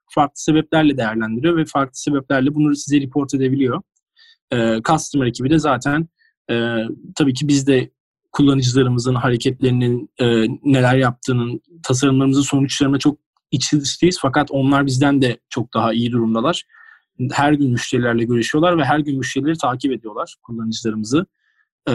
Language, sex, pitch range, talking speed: Turkish, male, 125-155 Hz, 130 wpm